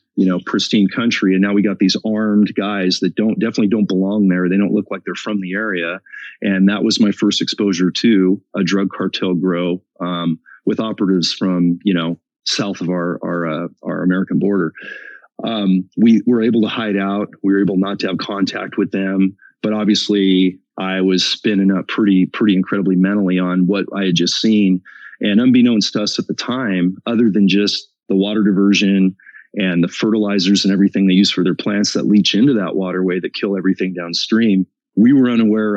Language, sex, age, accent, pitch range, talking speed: English, male, 30-49, American, 90-100 Hz, 195 wpm